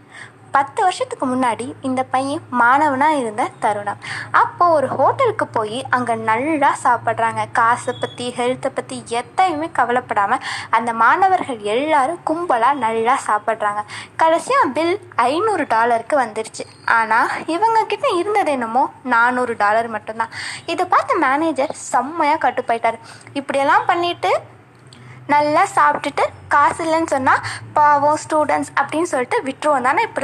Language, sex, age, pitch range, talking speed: Tamil, female, 20-39, 235-310 Hz, 115 wpm